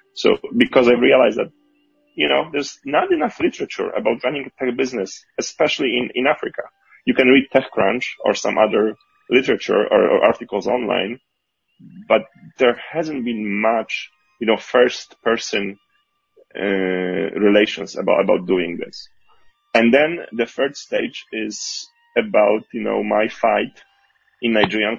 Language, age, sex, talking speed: English, 30-49, male, 145 wpm